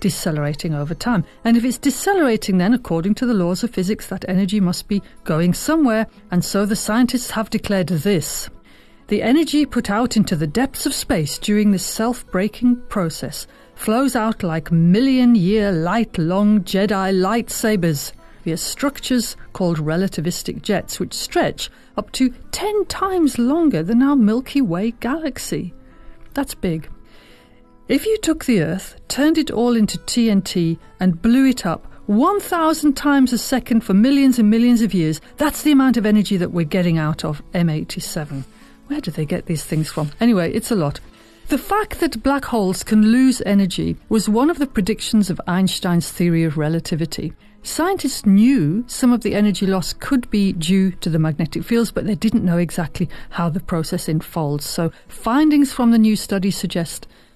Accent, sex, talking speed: British, female, 165 wpm